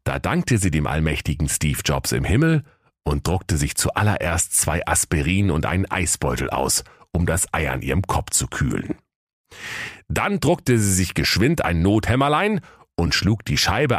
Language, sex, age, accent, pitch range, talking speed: German, male, 40-59, German, 80-105 Hz, 165 wpm